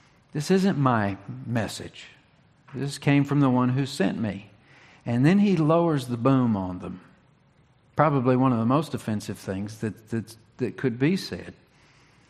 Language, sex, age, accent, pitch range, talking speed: English, male, 50-69, American, 115-145 Hz, 160 wpm